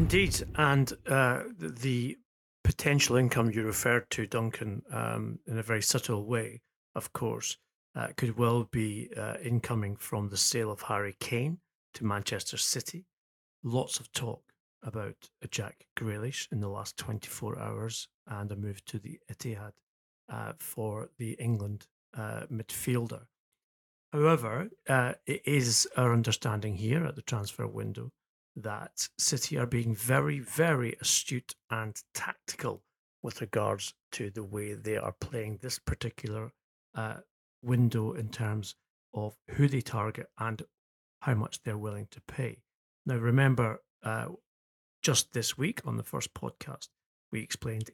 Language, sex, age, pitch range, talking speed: English, male, 40-59, 110-125 Hz, 145 wpm